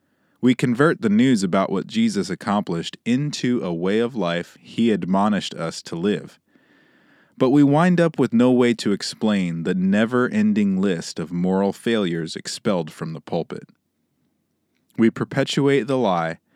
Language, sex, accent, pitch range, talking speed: English, male, American, 90-135 Hz, 150 wpm